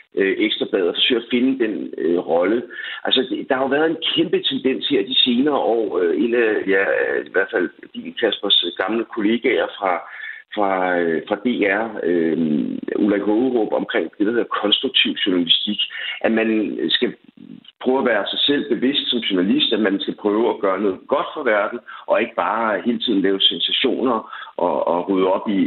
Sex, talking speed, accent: male, 175 wpm, native